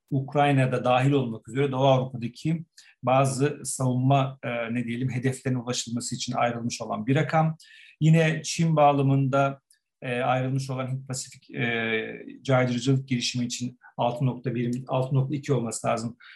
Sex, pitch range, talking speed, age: male, 125-145 Hz, 125 wpm, 50-69